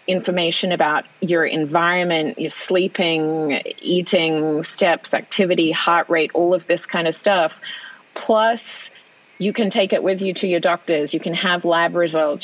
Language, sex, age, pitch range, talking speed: English, female, 30-49, 160-190 Hz, 155 wpm